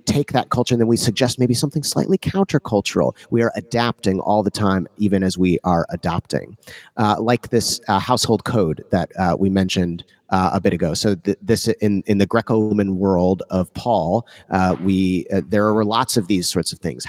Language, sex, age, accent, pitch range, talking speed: English, male, 30-49, American, 95-120 Hz, 200 wpm